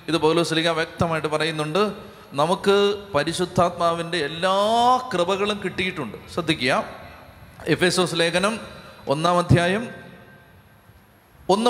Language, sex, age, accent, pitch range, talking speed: Malayalam, male, 30-49, native, 165-200 Hz, 75 wpm